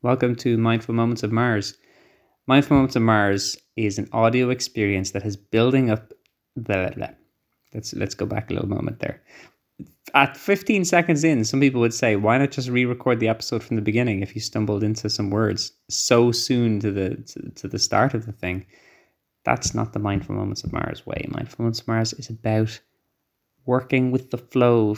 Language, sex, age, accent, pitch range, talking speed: English, male, 20-39, Irish, 110-135 Hz, 195 wpm